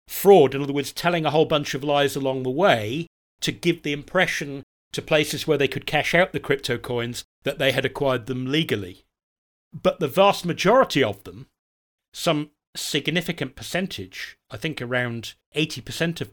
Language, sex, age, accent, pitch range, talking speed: English, male, 40-59, British, 130-165 Hz, 175 wpm